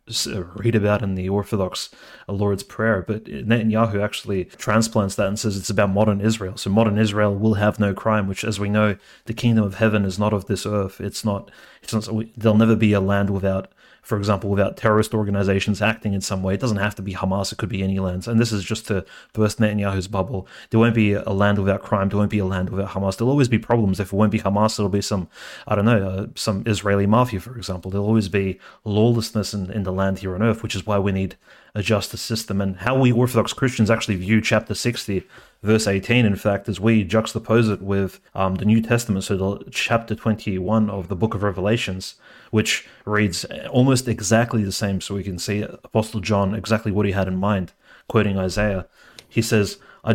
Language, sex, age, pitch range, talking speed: English, male, 30-49, 100-110 Hz, 225 wpm